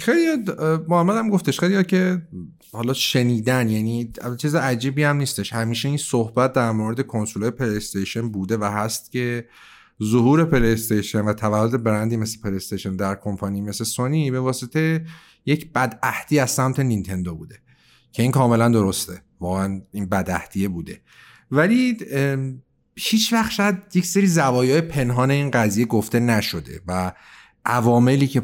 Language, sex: Persian, male